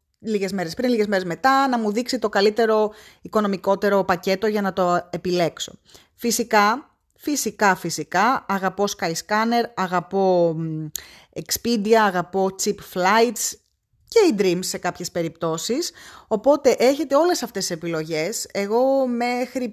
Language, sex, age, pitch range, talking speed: Greek, female, 20-39, 180-230 Hz, 130 wpm